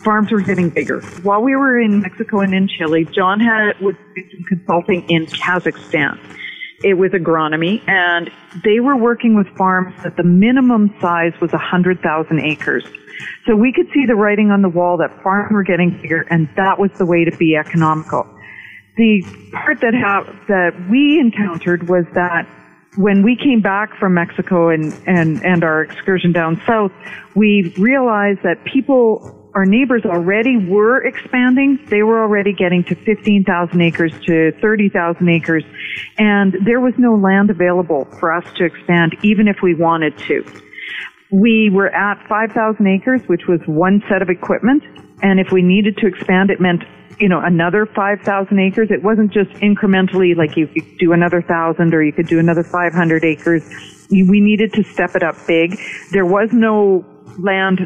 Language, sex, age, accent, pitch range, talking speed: English, female, 40-59, American, 175-210 Hz, 175 wpm